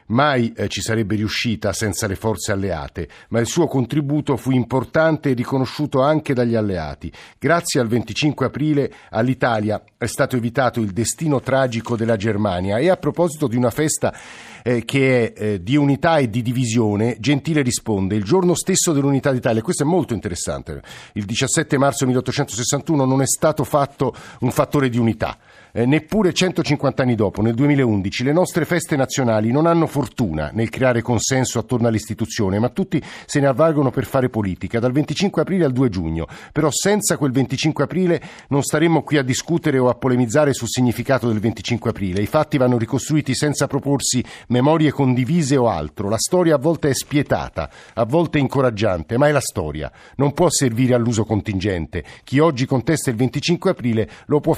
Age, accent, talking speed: 50-69, native, 170 wpm